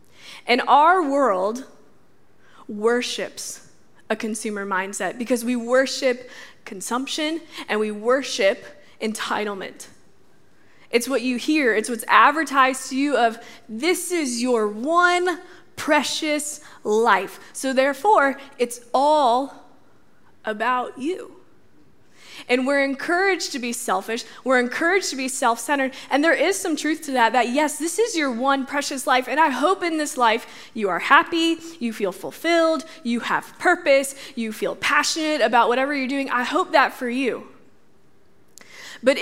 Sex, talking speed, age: female, 140 wpm, 20-39